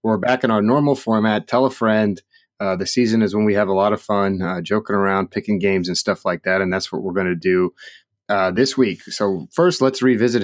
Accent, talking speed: American, 240 wpm